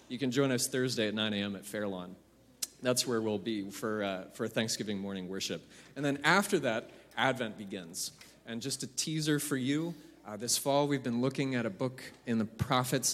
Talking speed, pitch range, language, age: 200 wpm, 105-130 Hz, English, 30-49